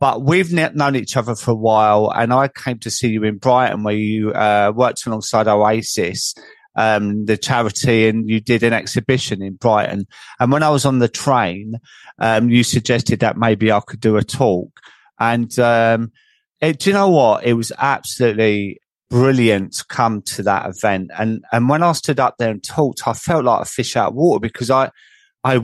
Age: 30-49